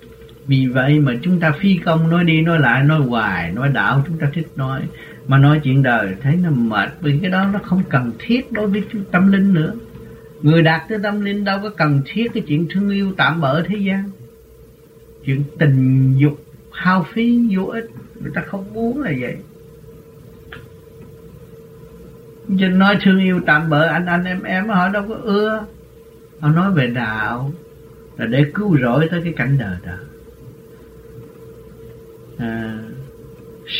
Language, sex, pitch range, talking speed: Vietnamese, male, 145-190 Hz, 170 wpm